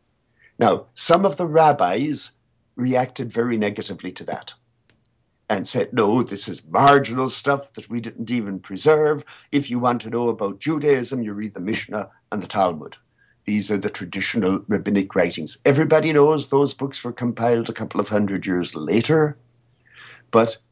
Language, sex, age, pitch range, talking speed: English, male, 60-79, 115-140 Hz, 160 wpm